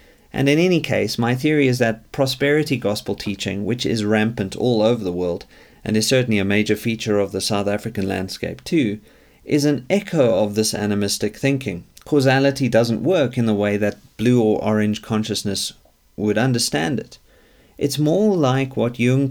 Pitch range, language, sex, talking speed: 100-130 Hz, English, male, 175 wpm